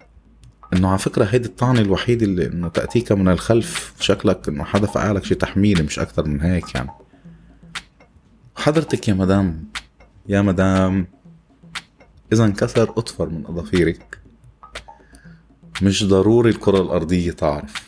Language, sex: Arabic, male